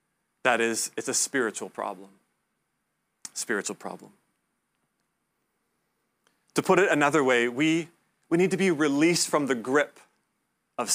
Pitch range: 135-160 Hz